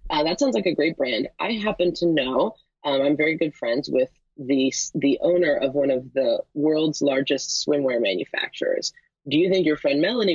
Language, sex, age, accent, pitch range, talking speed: English, female, 30-49, American, 135-170 Hz, 195 wpm